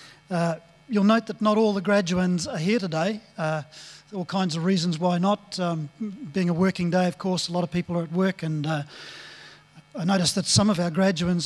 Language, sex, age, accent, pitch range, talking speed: English, male, 40-59, Australian, 165-195 Hz, 215 wpm